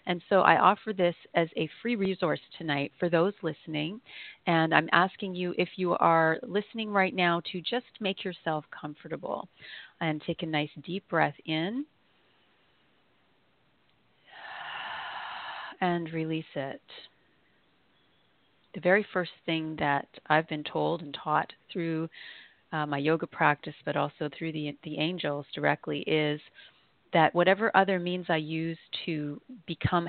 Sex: female